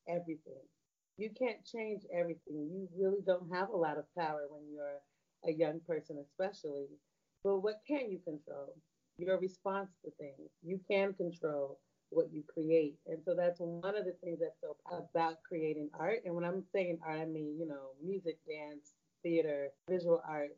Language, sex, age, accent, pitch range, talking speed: English, female, 40-59, American, 150-185 Hz, 175 wpm